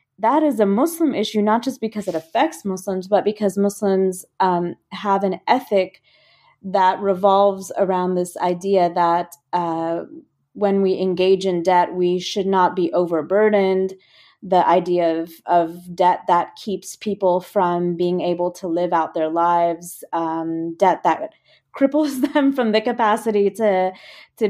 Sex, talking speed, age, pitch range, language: female, 150 wpm, 20-39, 185-230 Hz, English